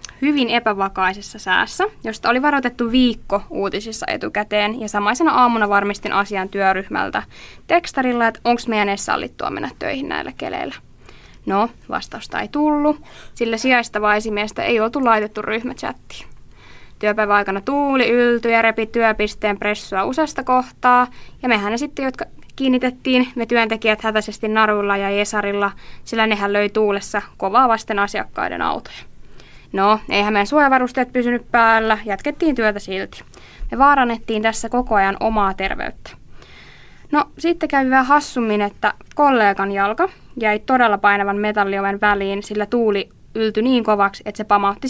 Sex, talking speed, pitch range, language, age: female, 140 wpm, 205-255 Hz, Finnish, 20-39